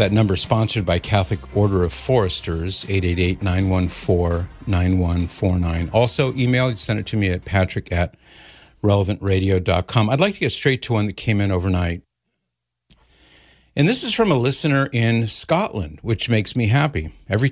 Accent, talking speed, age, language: American, 150 wpm, 50-69, English